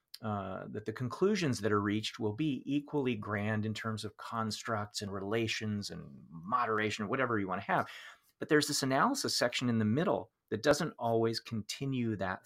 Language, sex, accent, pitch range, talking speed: English, male, American, 105-125 Hz, 185 wpm